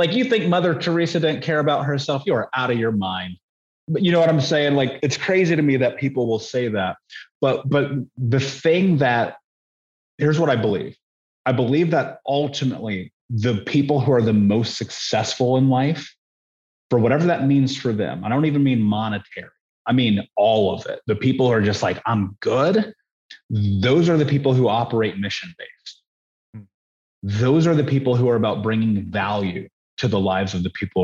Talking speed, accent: 190 wpm, American